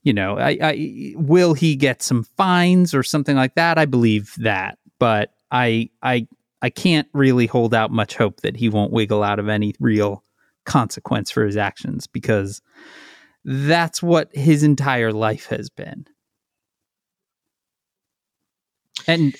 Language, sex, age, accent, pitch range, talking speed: English, male, 30-49, American, 115-160 Hz, 145 wpm